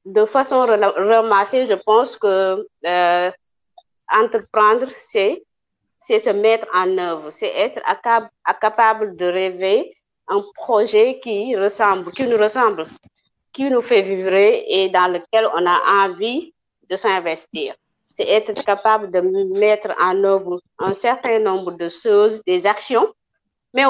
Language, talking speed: French, 140 wpm